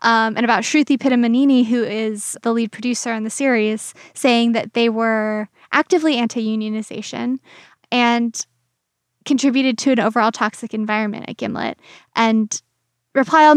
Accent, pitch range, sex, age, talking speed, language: American, 220-260 Hz, female, 10-29, 135 wpm, English